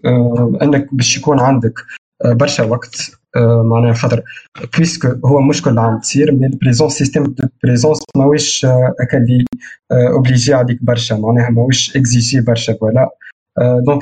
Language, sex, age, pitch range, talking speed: Arabic, male, 20-39, 120-145 Hz, 130 wpm